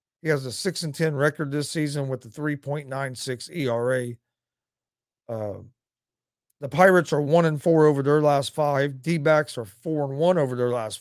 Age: 40-59